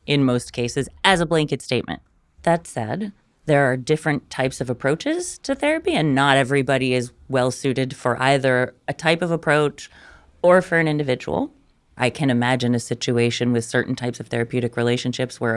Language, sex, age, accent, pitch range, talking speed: English, female, 30-49, American, 115-140 Hz, 175 wpm